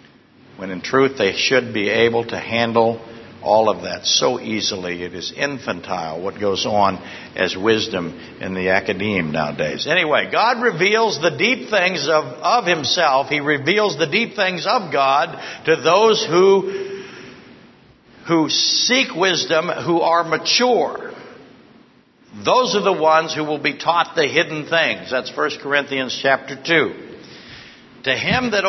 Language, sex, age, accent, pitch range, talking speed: English, male, 60-79, American, 145-200 Hz, 145 wpm